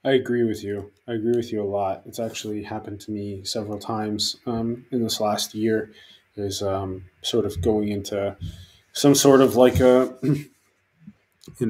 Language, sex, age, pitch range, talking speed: English, male, 20-39, 95-110 Hz, 175 wpm